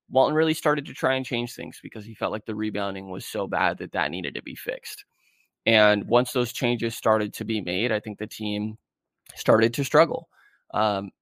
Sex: male